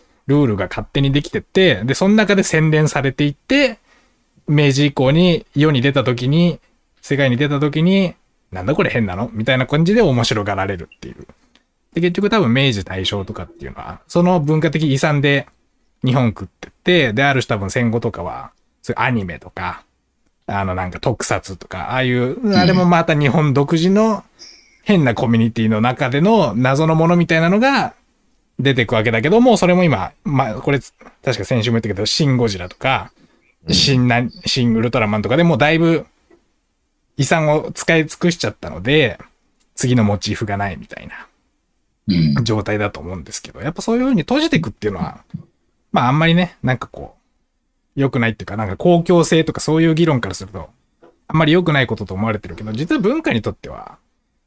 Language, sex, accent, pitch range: Japanese, male, native, 110-165 Hz